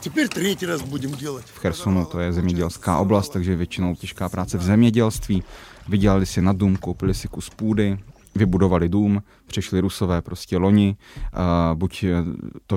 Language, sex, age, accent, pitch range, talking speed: Czech, male, 20-39, native, 90-100 Hz, 130 wpm